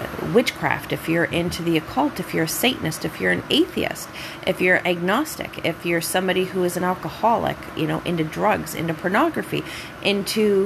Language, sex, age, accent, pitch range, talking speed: English, female, 30-49, American, 165-210 Hz, 175 wpm